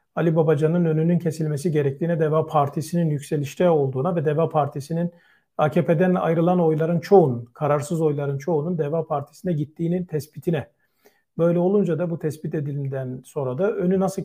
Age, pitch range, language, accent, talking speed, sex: 40-59, 145-170 Hz, Turkish, native, 140 wpm, male